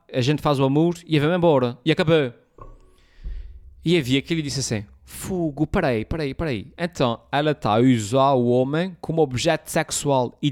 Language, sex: Portuguese, male